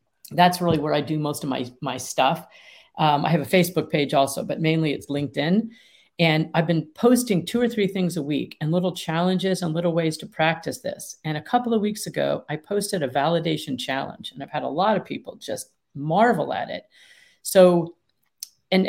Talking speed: 205 wpm